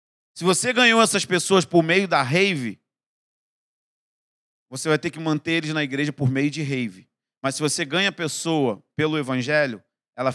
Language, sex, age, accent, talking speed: Portuguese, male, 50-69, Brazilian, 175 wpm